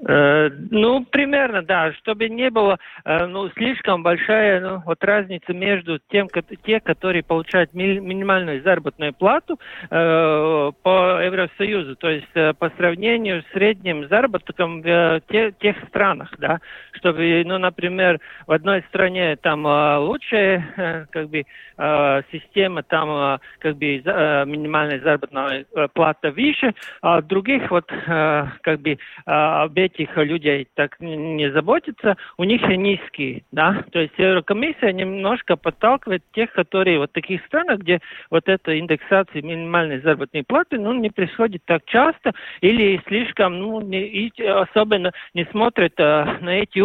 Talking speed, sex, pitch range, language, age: 150 wpm, male, 155-200 Hz, Russian, 50-69